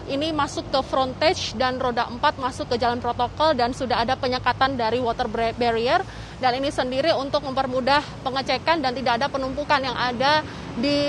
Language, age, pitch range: Indonesian, 20-39, 250-295 Hz